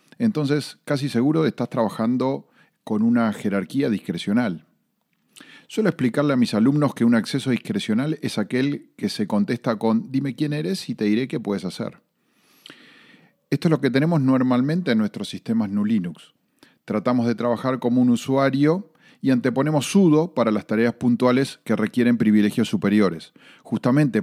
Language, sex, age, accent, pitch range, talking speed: Spanish, male, 40-59, Argentinian, 115-155 Hz, 150 wpm